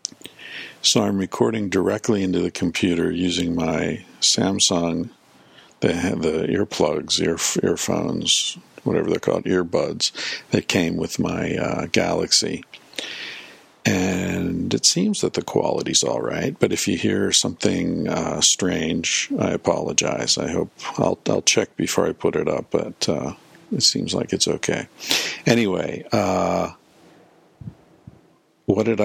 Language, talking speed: English, 130 wpm